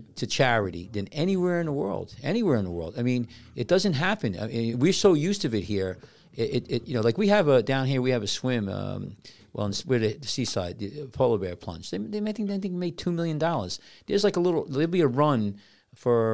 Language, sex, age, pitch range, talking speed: English, male, 40-59, 105-135 Hz, 260 wpm